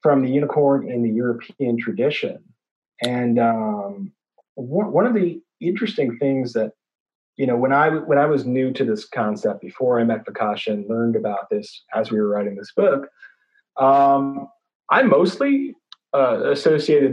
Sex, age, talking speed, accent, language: male, 30-49, 160 wpm, American, English